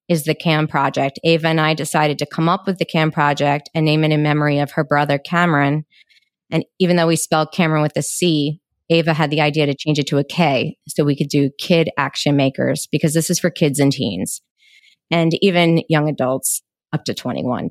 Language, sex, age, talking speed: English, female, 20-39, 215 wpm